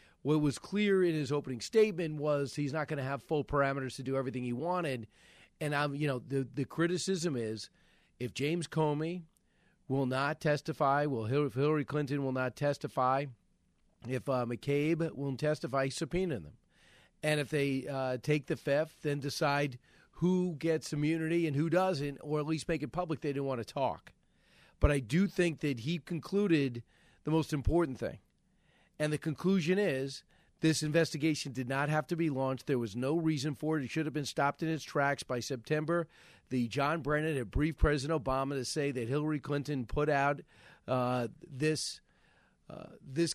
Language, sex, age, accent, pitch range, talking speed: English, male, 40-59, American, 135-160 Hz, 180 wpm